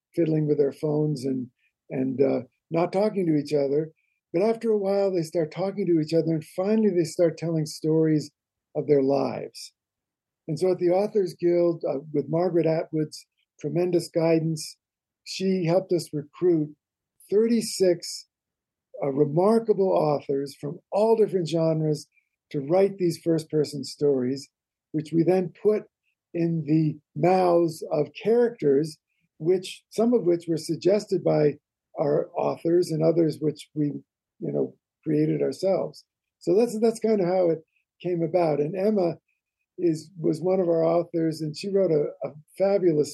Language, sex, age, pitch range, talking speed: English, male, 50-69, 150-185 Hz, 150 wpm